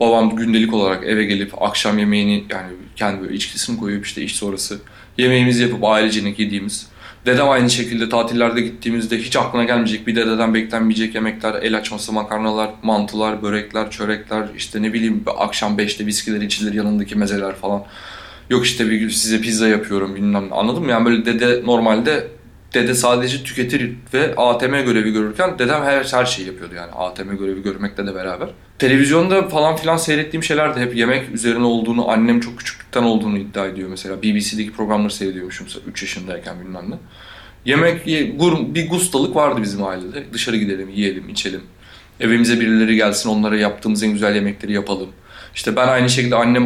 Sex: male